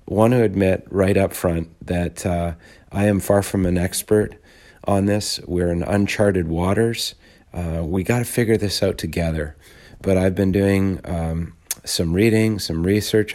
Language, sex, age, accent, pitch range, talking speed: English, male, 40-59, American, 90-105 Hz, 165 wpm